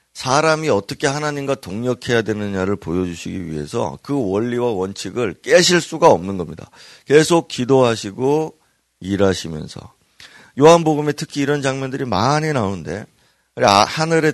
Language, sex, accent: Korean, male, native